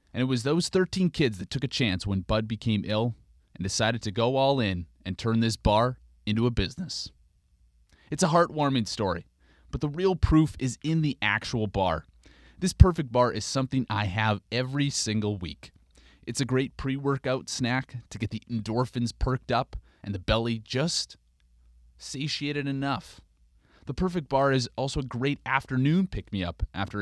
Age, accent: 30-49, American